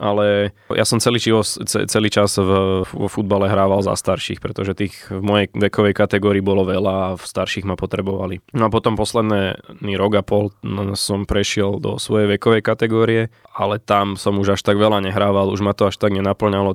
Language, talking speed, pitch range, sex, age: Slovak, 190 wpm, 100-105 Hz, male, 20-39